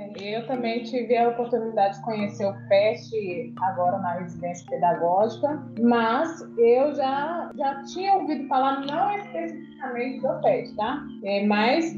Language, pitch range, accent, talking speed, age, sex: Portuguese, 220-275 Hz, Brazilian, 135 wpm, 20-39, female